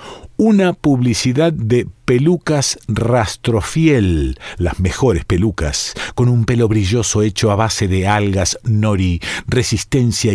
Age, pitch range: 50-69, 100-135 Hz